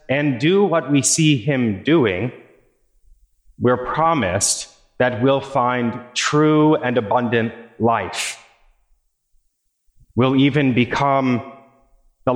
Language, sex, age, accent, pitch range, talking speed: English, male, 30-49, American, 120-150 Hz, 95 wpm